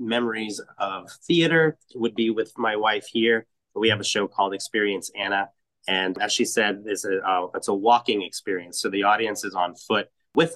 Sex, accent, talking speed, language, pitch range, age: male, American, 195 wpm, English, 105-125 Hz, 30-49